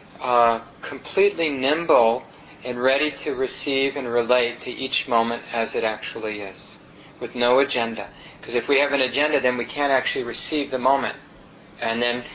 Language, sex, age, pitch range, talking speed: English, male, 40-59, 120-140 Hz, 165 wpm